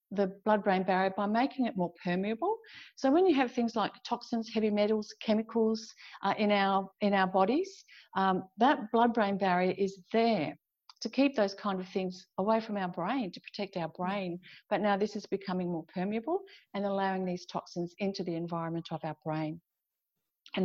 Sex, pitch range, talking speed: female, 185-230 Hz, 180 wpm